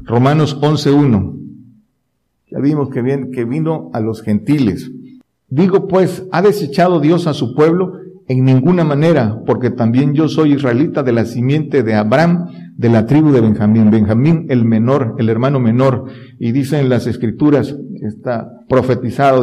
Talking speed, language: 155 wpm, Spanish